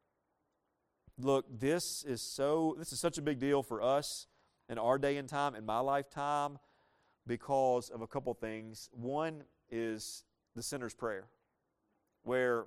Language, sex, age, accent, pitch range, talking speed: English, male, 40-59, American, 120-155 Hz, 145 wpm